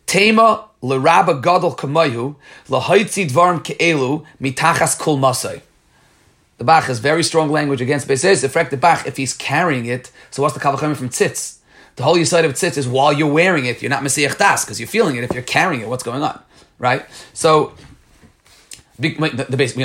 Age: 30-49